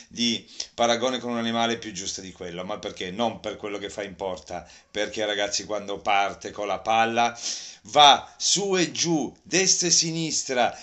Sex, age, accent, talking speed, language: male, 40-59, native, 175 wpm, Italian